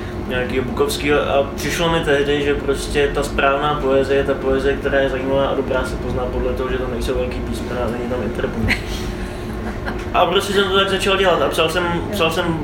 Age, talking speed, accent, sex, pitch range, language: 20-39, 205 wpm, native, male, 120-160 Hz, Czech